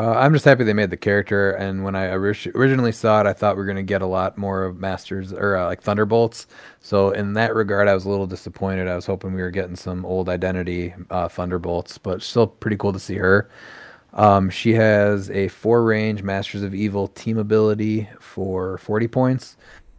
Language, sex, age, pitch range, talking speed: English, male, 30-49, 95-110 Hz, 215 wpm